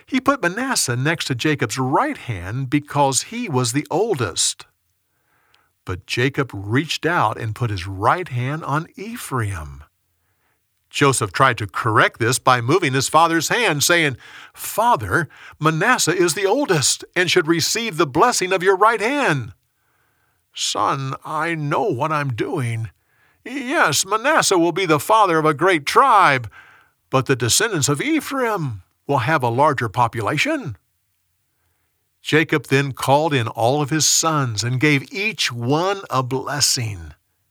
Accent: American